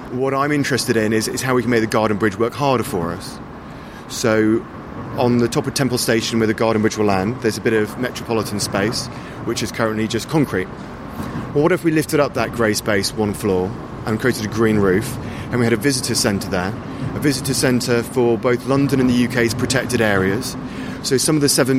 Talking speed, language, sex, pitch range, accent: 220 wpm, English, male, 110-130 Hz, British